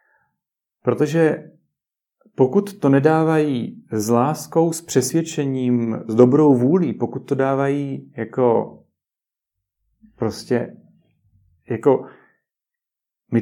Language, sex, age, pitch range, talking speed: Czech, male, 40-59, 120-155 Hz, 80 wpm